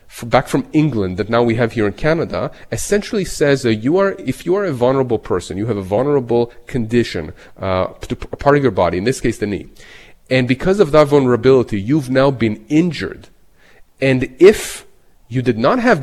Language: English